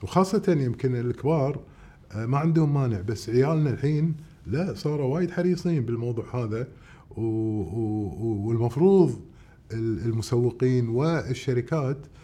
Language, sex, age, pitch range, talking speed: Arabic, male, 30-49, 115-155 Hz, 100 wpm